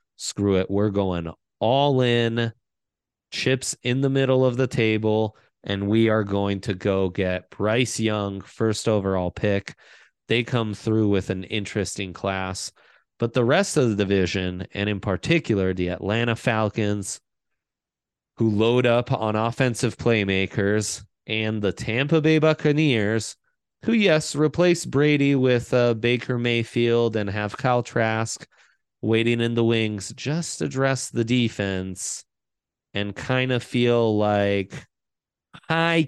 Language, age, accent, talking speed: English, 20-39, American, 135 wpm